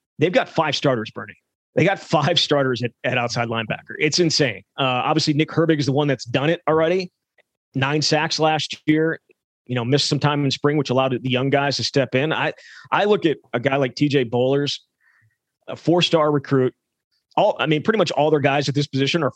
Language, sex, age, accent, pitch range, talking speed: English, male, 30-49, American, 130-155 Hz, 215 wpm